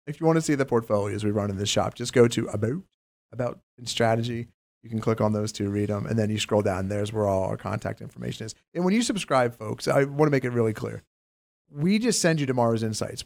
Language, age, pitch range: English, 40-59, 110-150 Hz